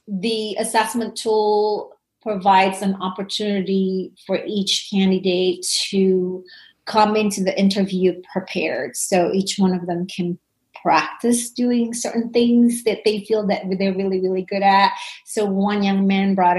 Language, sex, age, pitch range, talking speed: English, female, 30-49, 185-210 Hz, 140 wpm